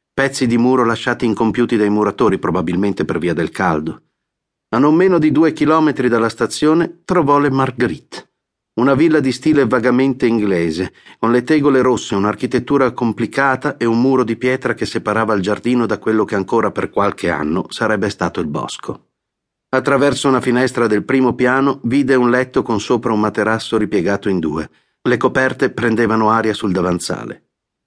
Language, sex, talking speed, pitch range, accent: Italian, male, 165 wpm, 105-130 Hz, native